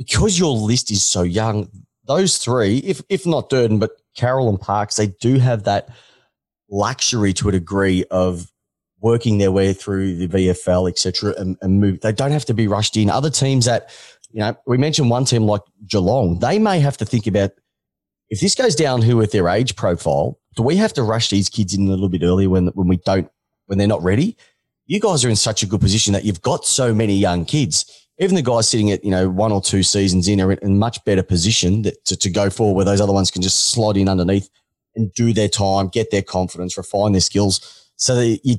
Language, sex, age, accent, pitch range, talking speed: English, male, 30-49, Australian, 95-120 Hz, 230 wpm